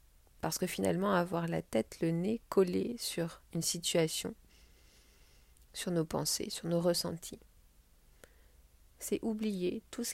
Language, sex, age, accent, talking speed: French, female, 30-49, French, 130 wpm